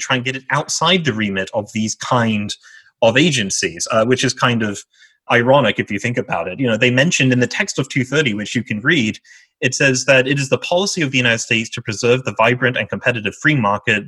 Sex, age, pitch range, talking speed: male, 30-49, 110-135 Hz, 235 wpm